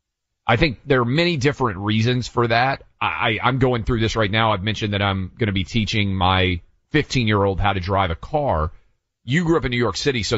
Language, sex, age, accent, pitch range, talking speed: English, male, 40-59, American, 100-135 Hz, 220 wpm